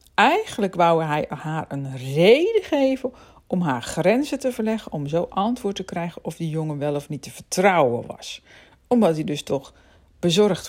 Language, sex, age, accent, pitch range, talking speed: Dutch, female, 50-69, Dutch, 150-205 Hz, 175 wpm